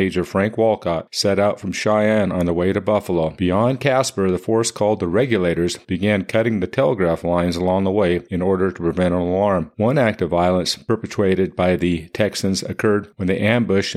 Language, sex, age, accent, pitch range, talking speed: English, male, 40-59, American, 90-110 Hz, 195 wpm